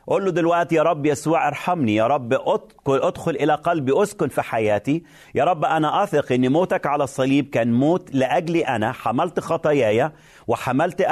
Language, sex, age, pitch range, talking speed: Arabic, male, 40-59, 135-180 Hz, 160 wpm